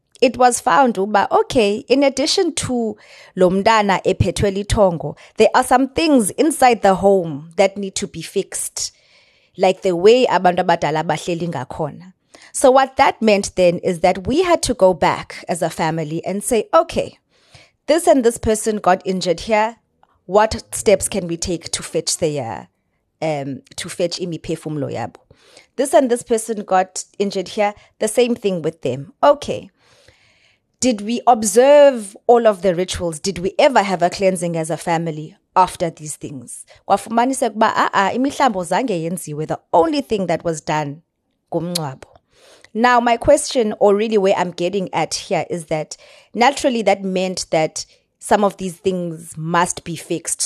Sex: female